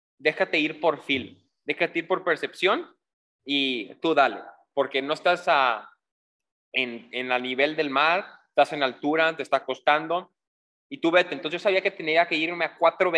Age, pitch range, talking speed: 20-39, 135-170 Hz, 175 wpm